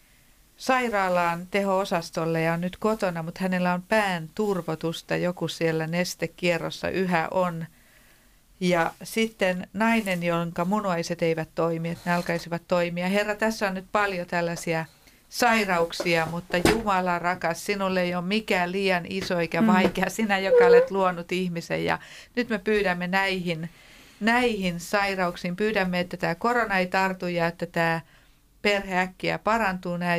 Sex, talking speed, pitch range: female, 135 wpm, 170-200 Hz